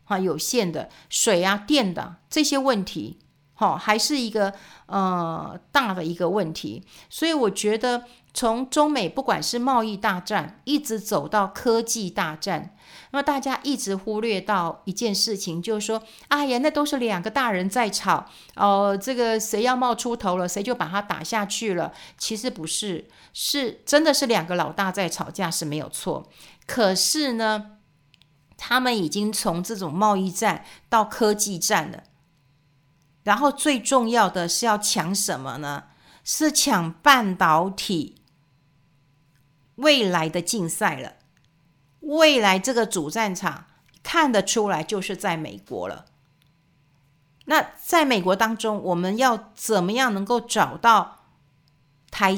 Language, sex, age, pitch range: Chinese, female, 50-69, 165-235 Hz